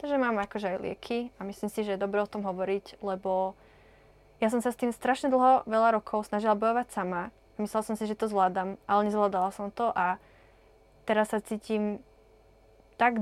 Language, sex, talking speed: Czech, female, 190 wpm